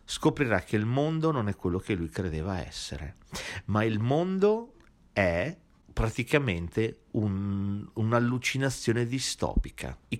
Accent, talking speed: native, 110 wpm